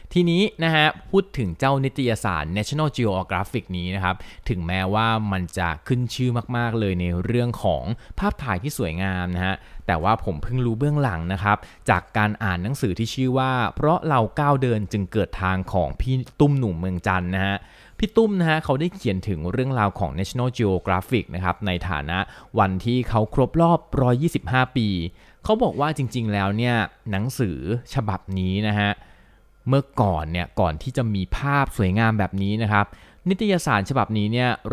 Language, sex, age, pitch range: Thai, male, 20-39, 95-130 Hz